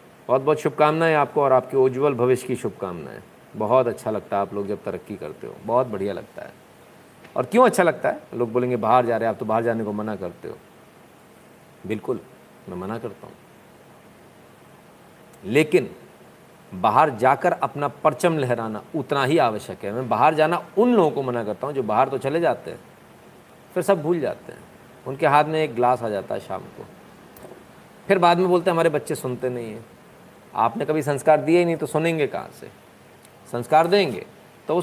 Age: 50-69